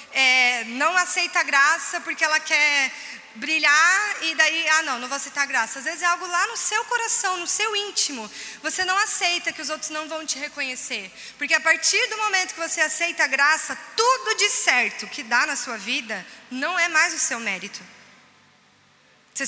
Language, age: Portuguese, 20-39